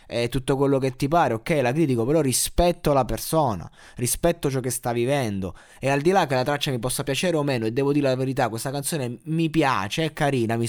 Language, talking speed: Italian, 235 wpm